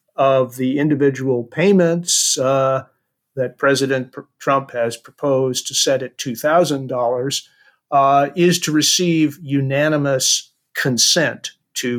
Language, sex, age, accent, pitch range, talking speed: English, male, 50-69, American, 125-150 Hz, 110 wpm